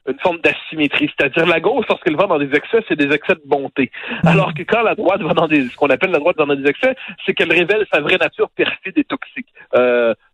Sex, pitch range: male, 140-175 Hz